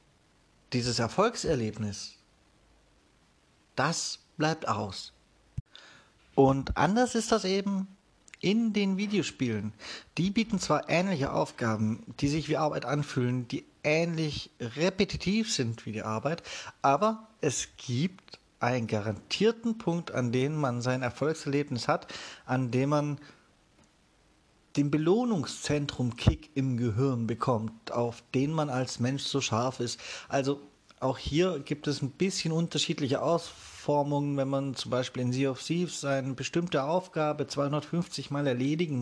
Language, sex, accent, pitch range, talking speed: German, male, German, 120-160 Hz, 125 wpm